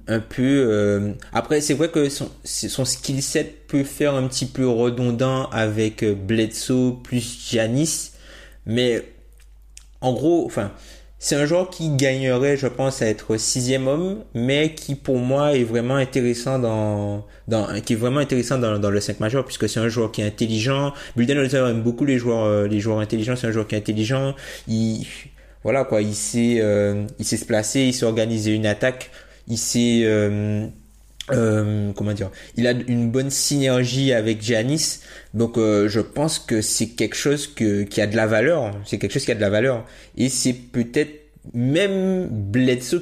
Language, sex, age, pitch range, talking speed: French, male, 20-39, 110-135 Hz, 185 wpm